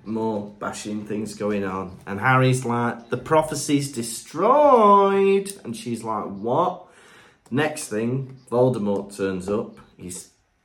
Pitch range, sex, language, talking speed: 105-140 Hz, male, English, 125 wpm